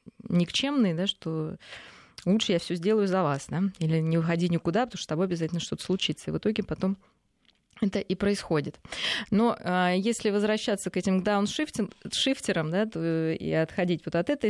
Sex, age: female, 20-39